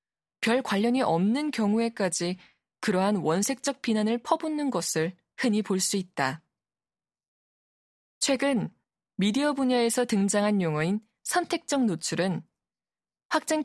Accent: native